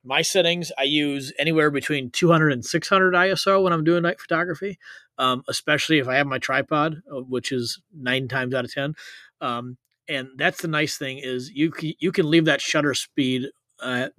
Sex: male